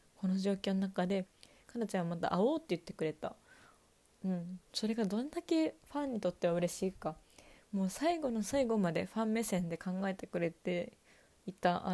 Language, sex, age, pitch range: Japanese, female, 20-39, 175-220 Hz